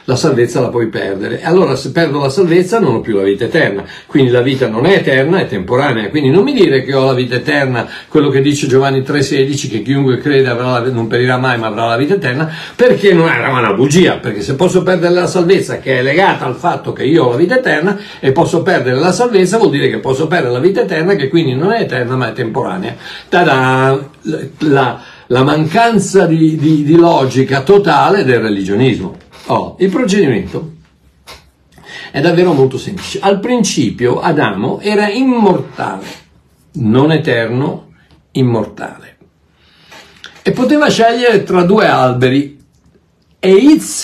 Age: 60-79